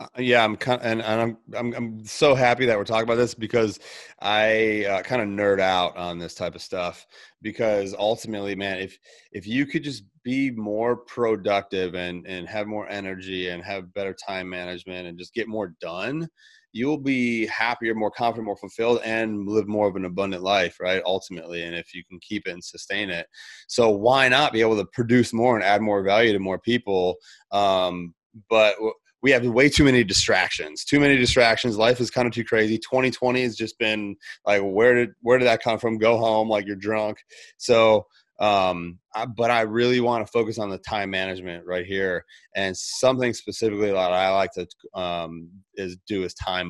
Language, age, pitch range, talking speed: English, 30-49, 95-115 Hz, 200 wpm